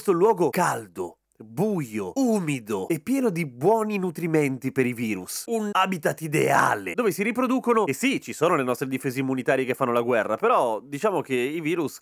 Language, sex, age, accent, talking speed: Italian, male, 30-49, native, 185 wpm